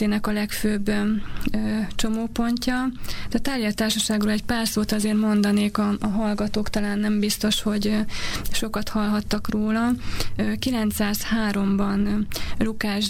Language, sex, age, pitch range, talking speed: Hungarian, female, 20-39, 200-215 Hz, 105 wpm